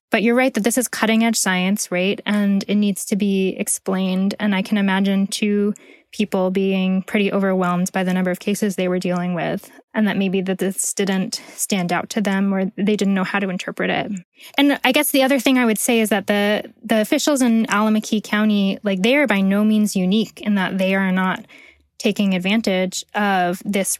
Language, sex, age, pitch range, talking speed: English, female, 20-39, 190-220 Hz, 210 wpm